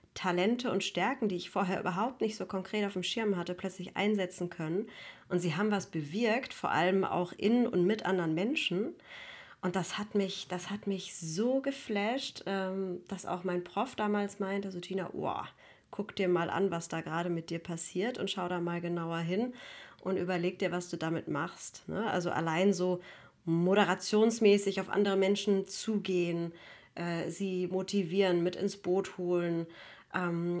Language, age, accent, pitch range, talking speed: German, 30-49, German, 180-205 Hz, 170 wpm